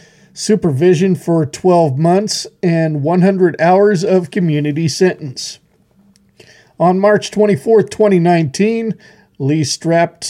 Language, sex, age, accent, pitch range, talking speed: English, male, 50-69, American, 155-185 Hz, 95 wpm